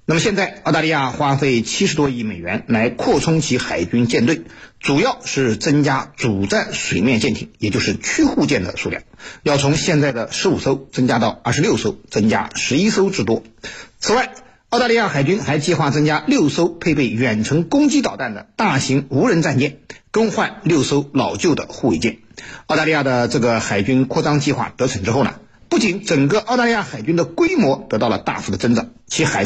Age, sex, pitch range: 50-69, male, 125-195 Hz